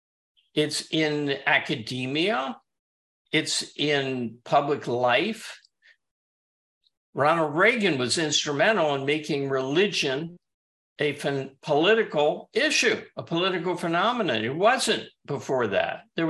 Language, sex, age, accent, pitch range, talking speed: English, male, 60-79, American, 125-175 Hz, 90 wpm